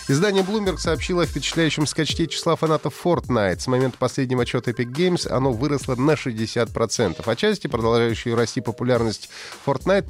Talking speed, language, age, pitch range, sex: 155 wpm, Russian, 30-49, 115-155 Hz, male